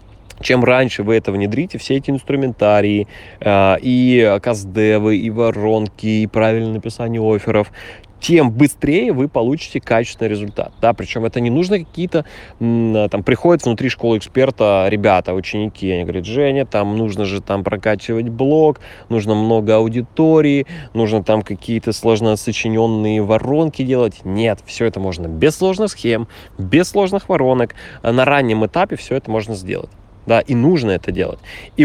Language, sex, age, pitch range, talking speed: Russian, male, 20-39, 105-130 Hz, 145 wpm